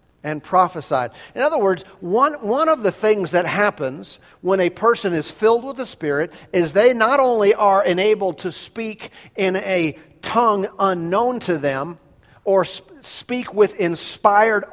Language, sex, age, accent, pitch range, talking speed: English, male, 50-69, American, 170-210 Hz, 160 wpm